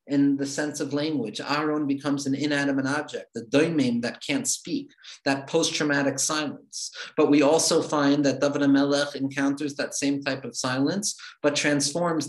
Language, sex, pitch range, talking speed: English, male, 135-155 Hz, 160 wpm